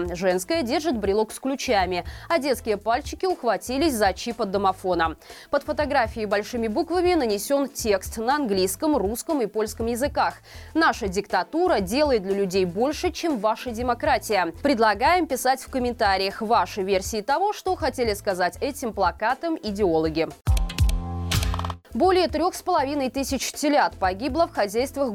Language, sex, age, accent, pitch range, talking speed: Russian, female, 20-39, native, 205-290 Hz, 130 wpm